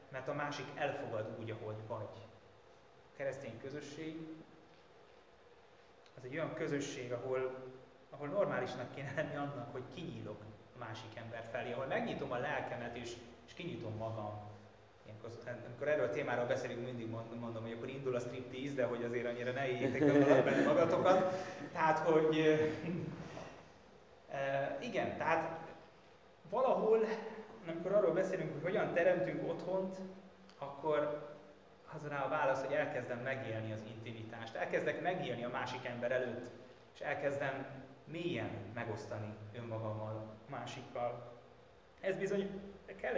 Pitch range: 115-150 Hz